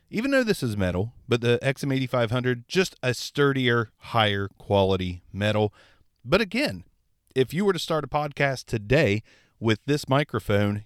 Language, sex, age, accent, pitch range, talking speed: English, male, 40-59, American, 105-135 Hz, 150 wpm